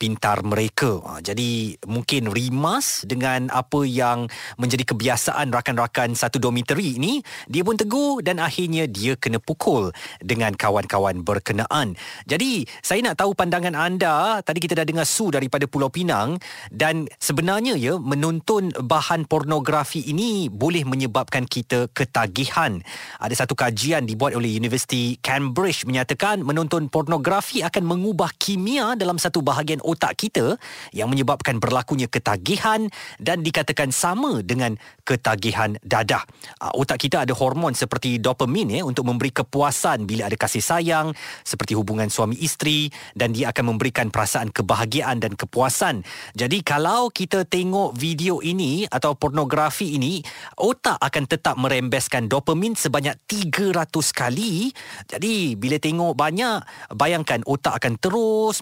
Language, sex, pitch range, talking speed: Malay, male, 125-170 Hz, 130 wpm